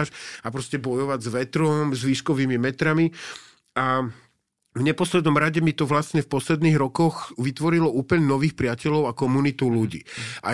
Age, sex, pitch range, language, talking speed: 40-59, male, 125-155 Hz, Slovak, 150 wpm